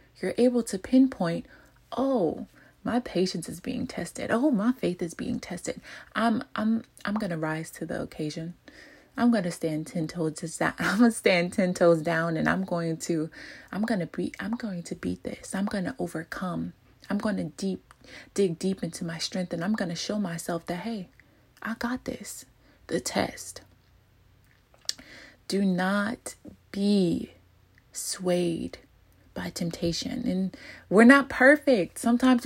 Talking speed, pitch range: 155 wpm, 175-225 Hz